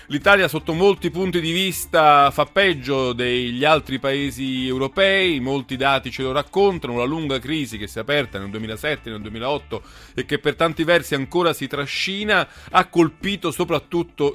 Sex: male